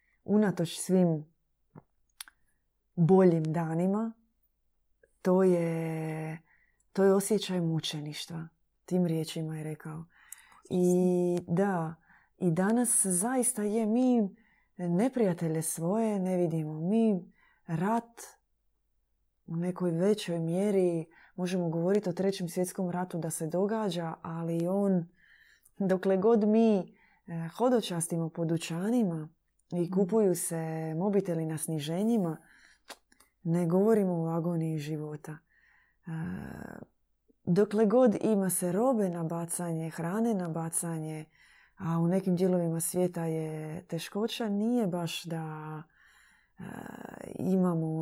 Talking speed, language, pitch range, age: 100 wpm, Croatian, 165-200 Hz, 20-39